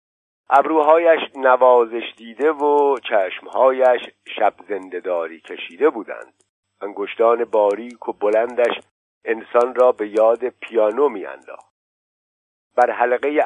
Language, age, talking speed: Persian, 50-69, 95 wpm